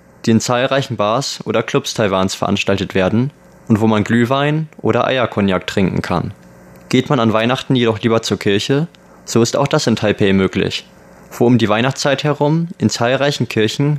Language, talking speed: German, 170 wpm